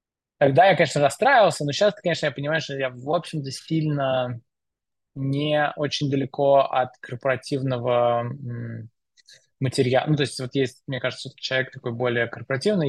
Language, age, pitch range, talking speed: Russian, 20-39, 125-140 Hz, 145 wpm